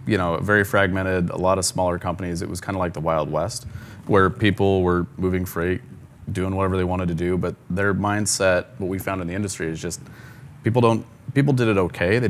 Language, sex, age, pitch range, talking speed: English, male, 30-49, 90-105 Hz, 225 wpm